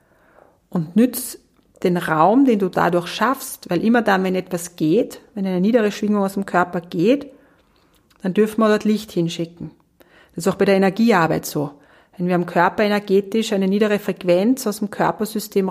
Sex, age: female, 40-59